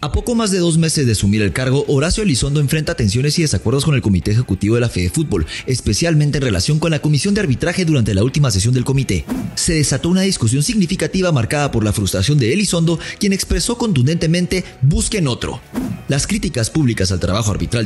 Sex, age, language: male, 30-49, English